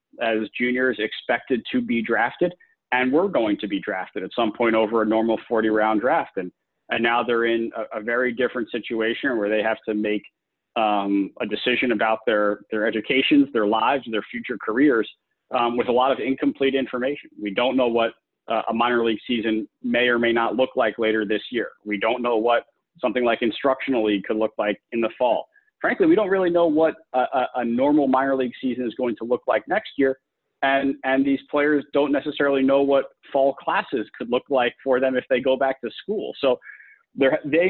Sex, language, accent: male, English, American